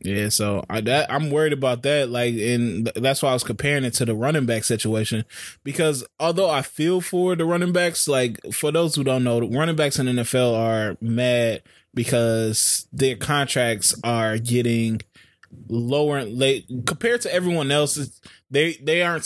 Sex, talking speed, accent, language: male, 180 wpm, American, English